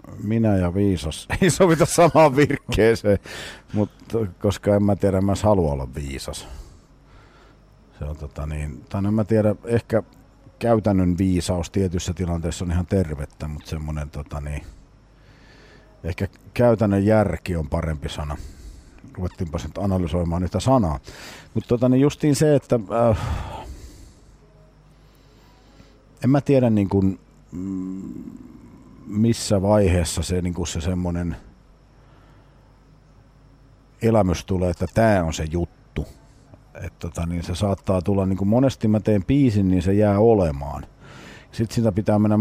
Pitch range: 85-115 Hz